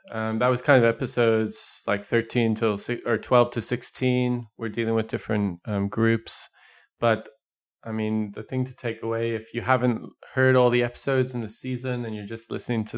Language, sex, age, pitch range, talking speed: English, male, 20-39, 110-125 Hz, 200 wpm